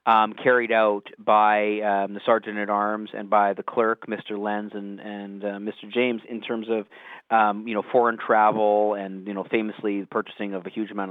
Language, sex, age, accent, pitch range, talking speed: English, male, 30-49, American, 105-120 Hz, 205 wpm